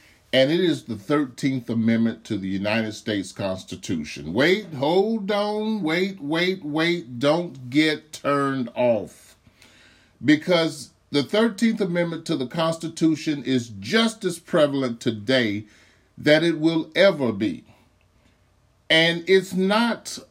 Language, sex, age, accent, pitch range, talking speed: English, male, 40-59, American, 130-200 Hz, 120 wpm